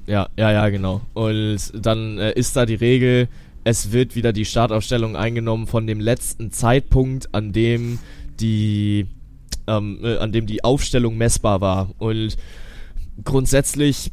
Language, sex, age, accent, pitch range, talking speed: German, male, 20-39, German, 110-130 Hz, 145 wpm